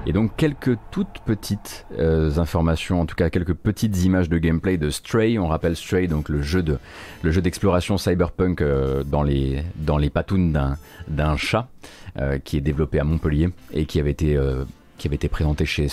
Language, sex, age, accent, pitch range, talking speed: French, male, 30-49, French, 80-100 Hz, 200 wpm